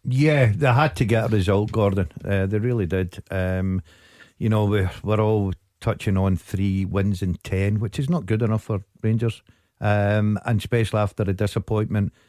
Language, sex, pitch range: English, male, 100-120 Hz